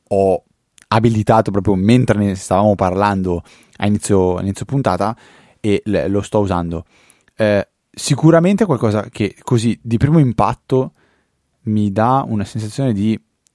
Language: Italian